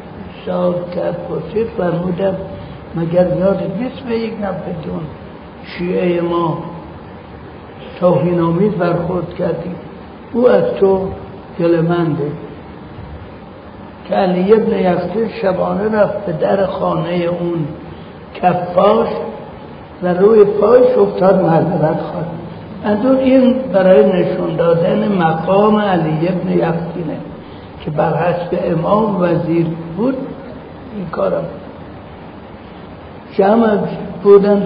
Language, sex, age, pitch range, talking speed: Persian, male, 60-79, 170-200 Hz, 95 wpm